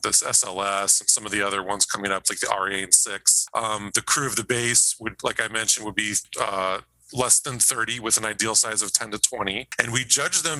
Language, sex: English, male